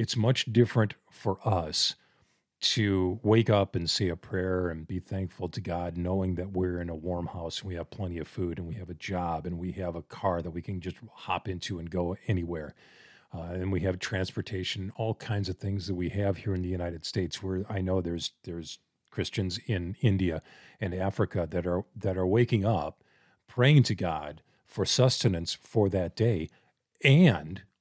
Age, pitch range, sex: 40-59, 90-110 Hz, male